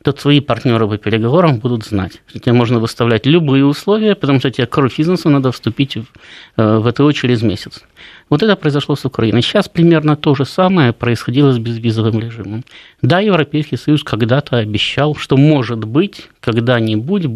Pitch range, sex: 125-160 Hz, male